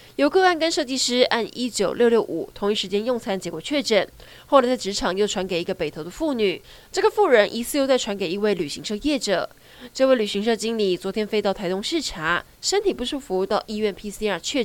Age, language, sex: 20-39, Chinese, female